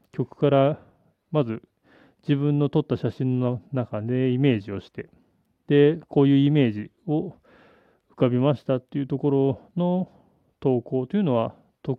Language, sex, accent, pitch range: Japanese, male, native, 115-150 Hz